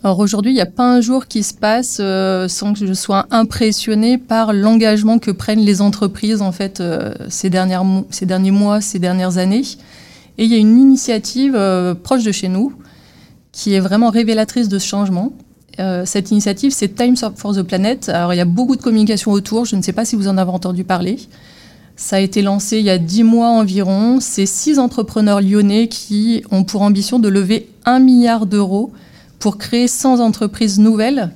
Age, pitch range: 30-49, 195-235 Hz